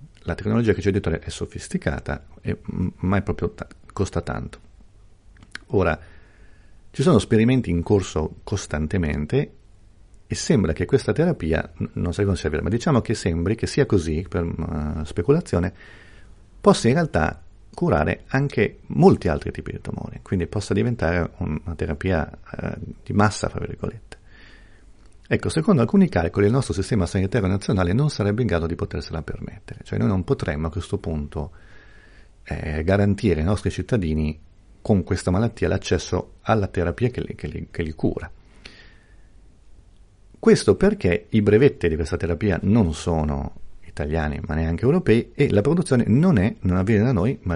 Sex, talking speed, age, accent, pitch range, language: male, 160 wpm, 50-69, native, 85-105 Hz, Italian